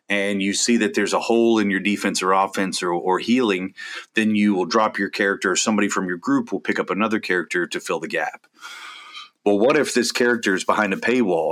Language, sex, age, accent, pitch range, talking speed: English, male, 30-49, American, 100-115 Hz, 230 wpm